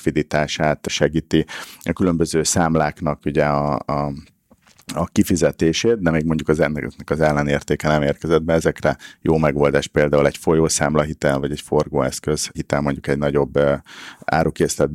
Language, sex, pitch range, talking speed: Hungarian, male, 75-85 Hz, 130 wpm